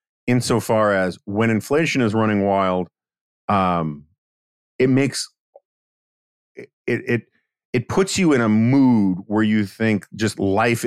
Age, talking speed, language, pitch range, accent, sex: 40-59, 125 wpm, English, 95-115 Hz, American, male